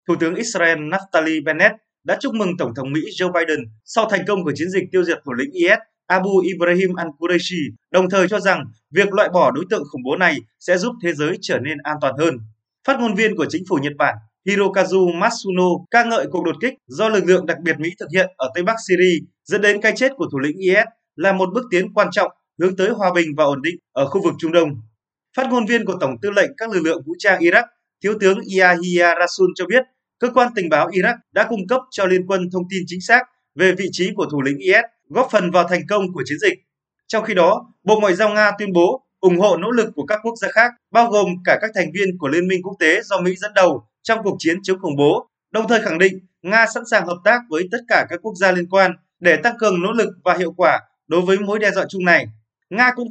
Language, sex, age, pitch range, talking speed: Vietnamese, male, 20-39, 170-220 Hz, 250 wpm